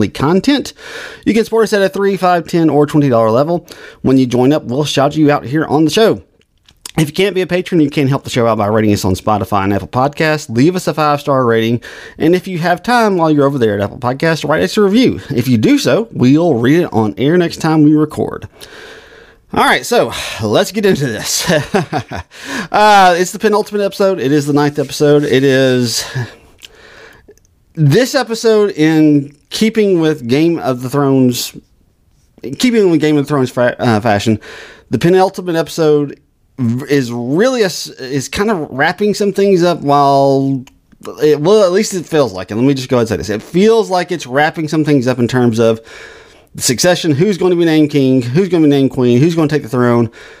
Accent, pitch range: American, 130-180 Hz